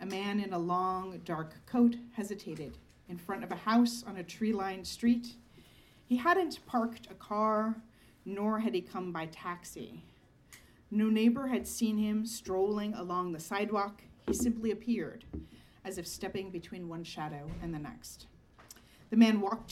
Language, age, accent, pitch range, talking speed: English, 40-59, American, 180-225 Hz, 160 wpm